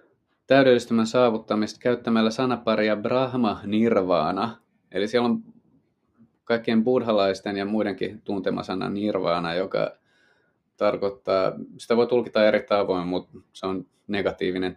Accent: native